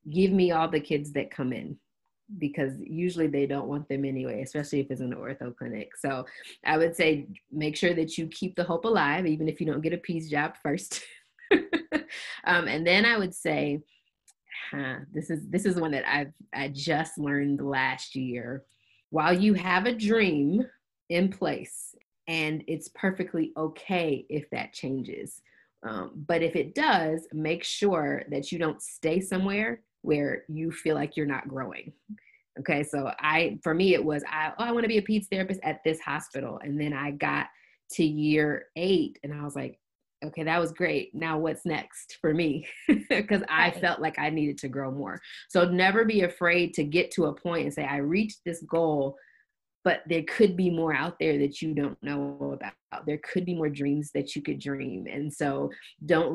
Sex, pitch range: female, 145-180 Hz